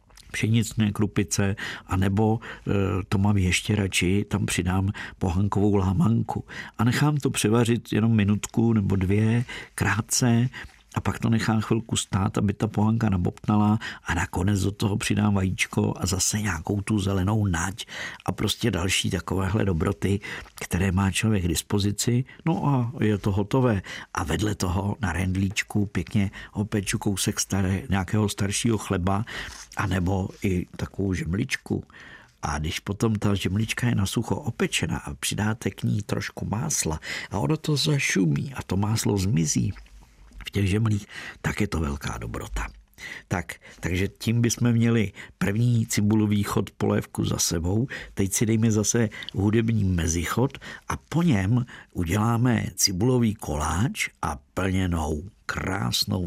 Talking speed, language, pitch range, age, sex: 140 wpm, Czech, 95-110 Hz, 50-69, male